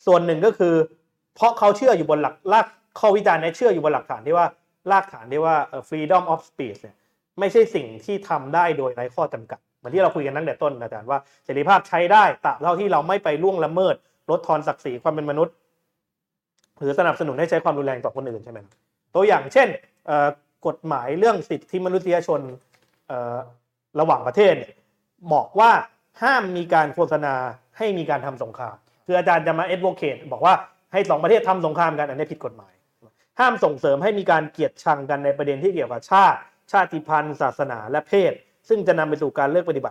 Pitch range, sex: 145-185 Hz, male